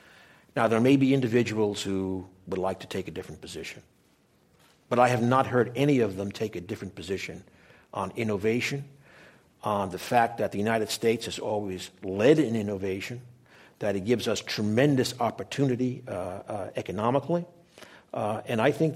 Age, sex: 60-79, male